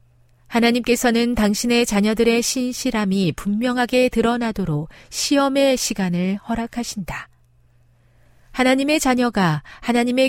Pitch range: 160-240 Hz